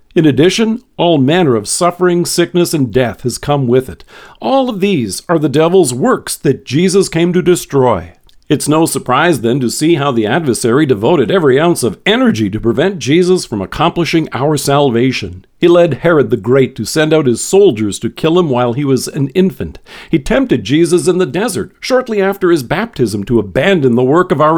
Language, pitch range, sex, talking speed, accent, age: English, 125-180 Hz, male, 195 wpm, American, 50-69